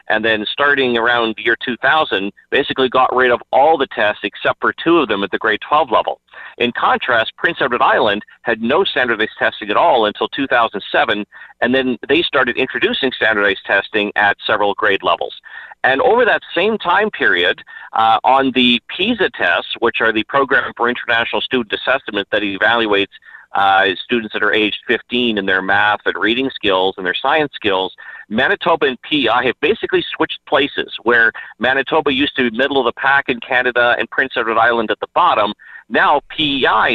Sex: male